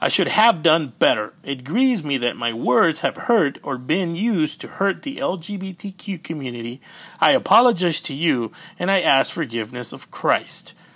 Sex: male